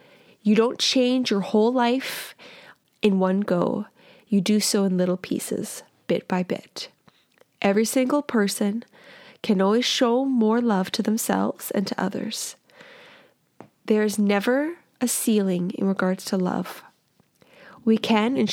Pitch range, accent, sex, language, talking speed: 195-245 Hz, American, female, English, 140 wpm